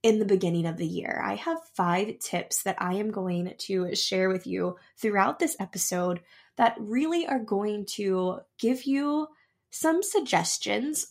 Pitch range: 180-235 Hz